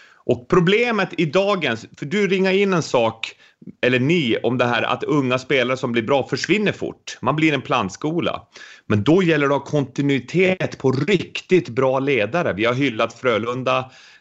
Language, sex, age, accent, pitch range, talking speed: English, male, 30-49, Swedish, 105-145 Hz, 170 wpm